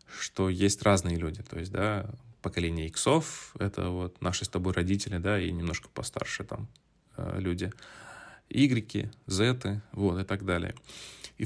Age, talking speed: 20-39, 145 wpm